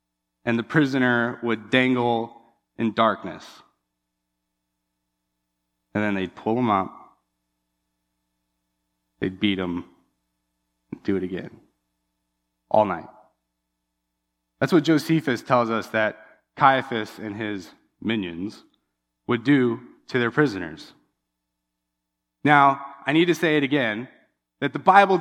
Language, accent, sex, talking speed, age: English, American, male, 110 wpm, 20-39